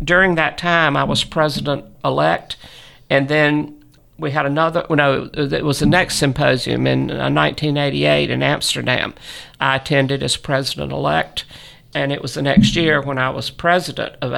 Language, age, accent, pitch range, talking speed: English, 50-69, American, 135-160 Hz, 155 wpm